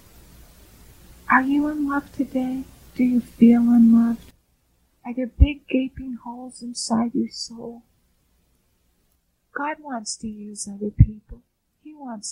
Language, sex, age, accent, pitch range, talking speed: English, female, 50-69, American, 205-275 Hz, 120 wpm